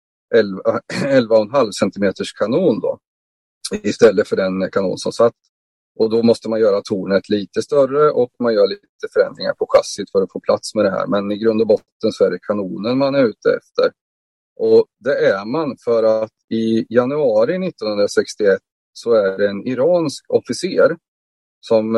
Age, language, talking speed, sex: 30-49, Swedish, 170 wpm, male